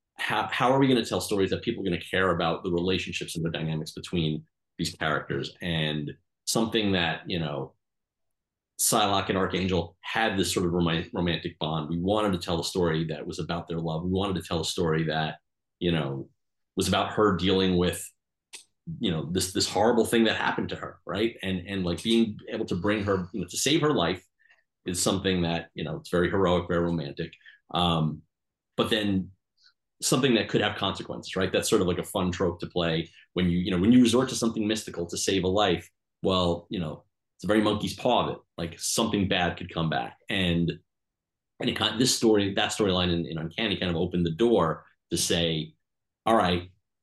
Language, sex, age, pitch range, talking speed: English, male, 30-49, 85-100 Hz, 210 wpm